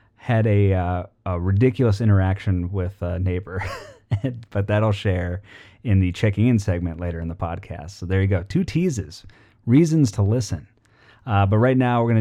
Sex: male